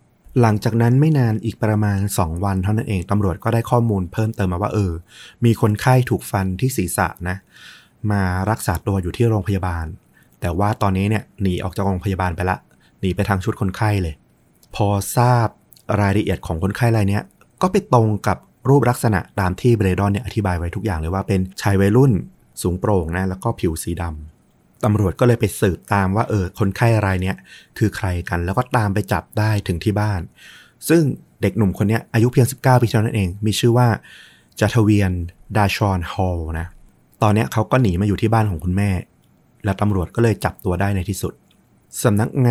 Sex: male